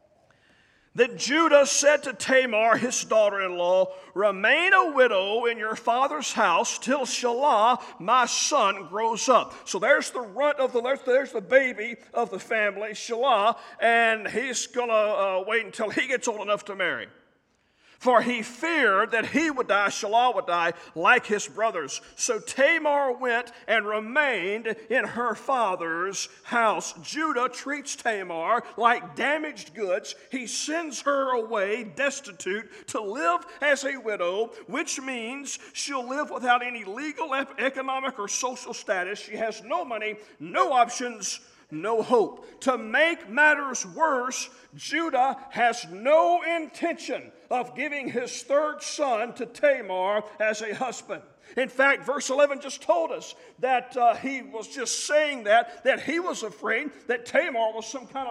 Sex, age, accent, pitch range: male, 40-59, American, 220-280 Hz